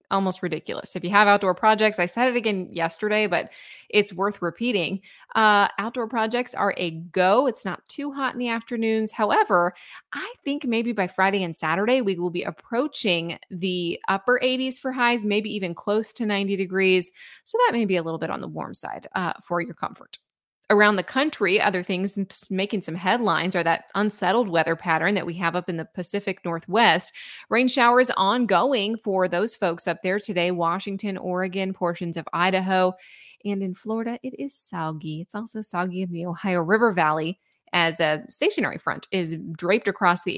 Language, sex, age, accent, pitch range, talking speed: English, female, 20-39, American, 175-230 Hz, 185 wpm